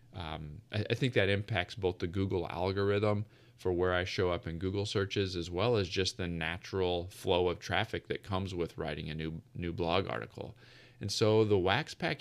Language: English